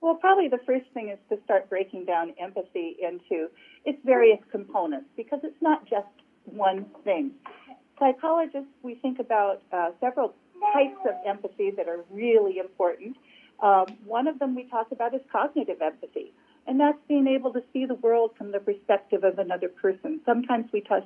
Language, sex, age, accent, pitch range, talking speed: English, female, 50-69, American, 200-280 Hz, 170 wpm